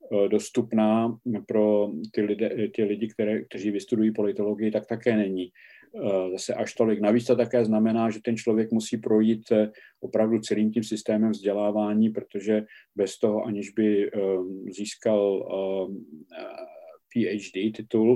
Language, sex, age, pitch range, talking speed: Czech, male, 50-69, 100-115 Hz, 120 wpm